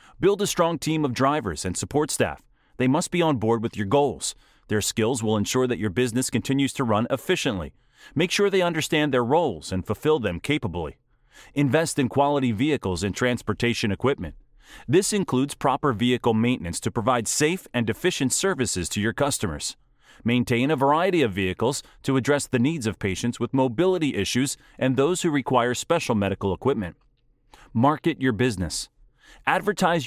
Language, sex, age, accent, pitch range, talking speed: English, male, 30-49, American, 115-160 Hz, 170 wpm